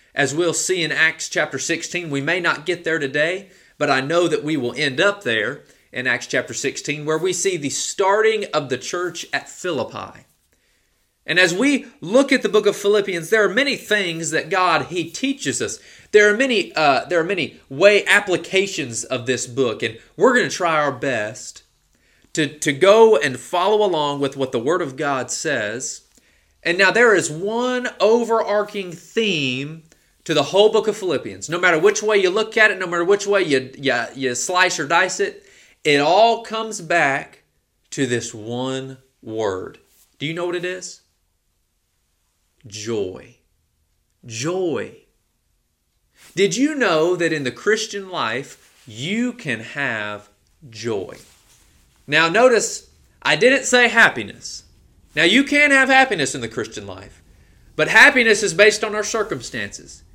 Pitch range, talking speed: 135-210 Hz, 170 wpm